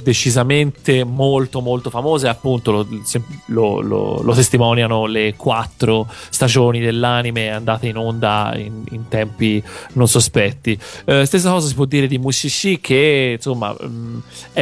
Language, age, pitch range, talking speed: Italian, 30-49, 115-130 Hz, 135 wpm